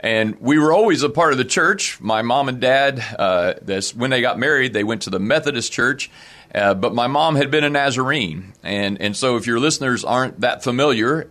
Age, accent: 40-59, American